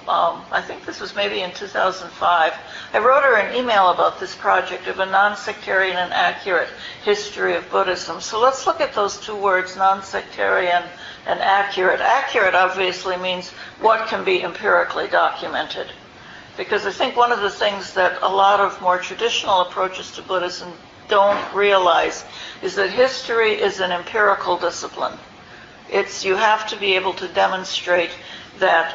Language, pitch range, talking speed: English, 175-205 Hz, 160 wpm